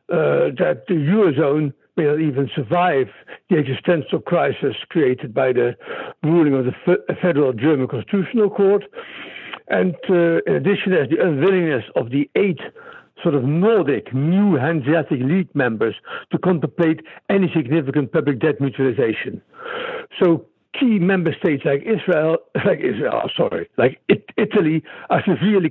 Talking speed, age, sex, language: 135 wpm, 60-79, male, English